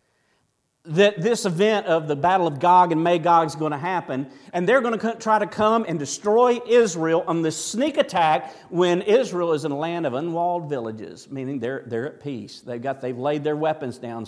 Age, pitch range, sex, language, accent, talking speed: 50-69, 145-205 Hz, male, English, American, 205 wpm